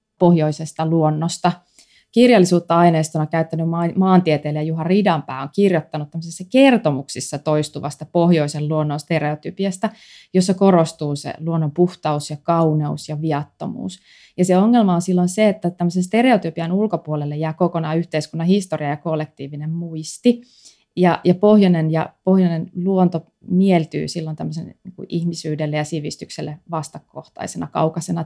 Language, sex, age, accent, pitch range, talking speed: Finnish, female, 20-39, native, 155-185 Hz, 115 wpm